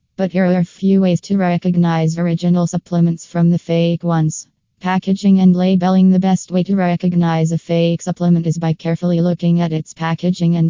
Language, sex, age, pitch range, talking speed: English, female, 20-39, 165-180 Hz, 185 wpm